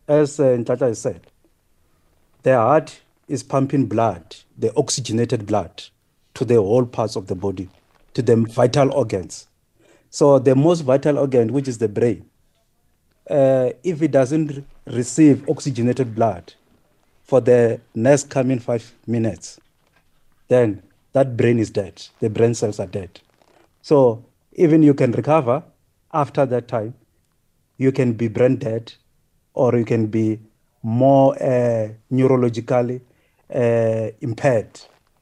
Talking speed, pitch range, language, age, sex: 130 wpm, 110-135 Hz, English, 50-69, male